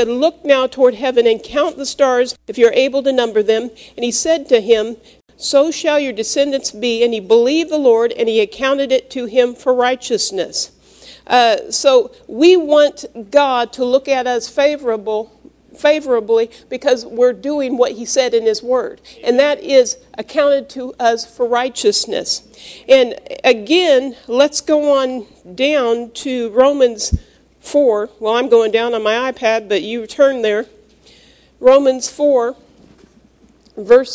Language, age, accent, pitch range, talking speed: English, 50-69, American, 230-280 Hz, 155 wpm